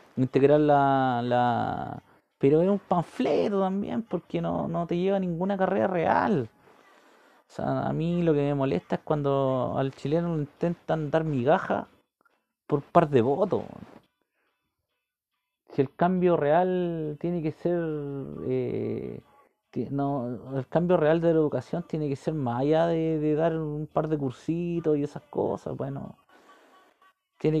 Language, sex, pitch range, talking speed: Spanish, male, 130-170 Hz, 150 wpm